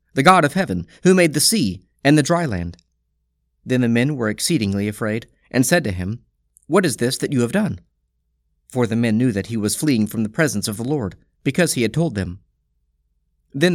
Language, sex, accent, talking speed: English, male, American, 215 wpm